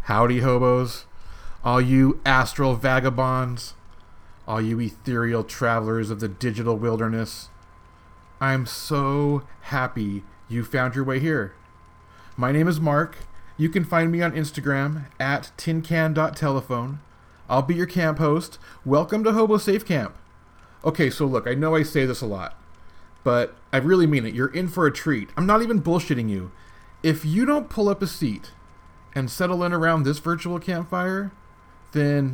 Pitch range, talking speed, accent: 110-155 Hz, 155 wpm, American